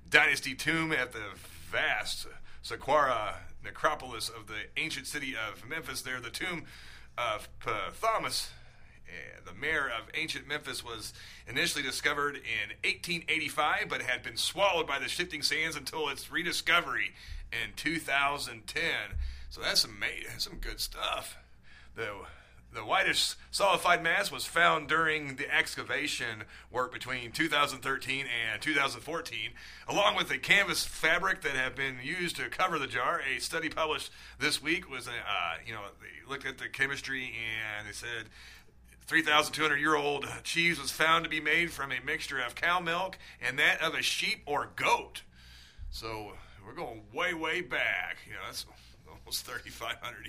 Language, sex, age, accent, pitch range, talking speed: English, male, 30-49, American, 110-150 Hz, 145 wpm